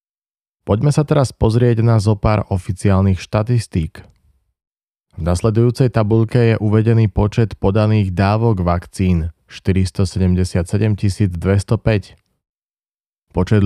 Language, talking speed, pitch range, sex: Slovak, 90 wpm, 95-115 Hz, male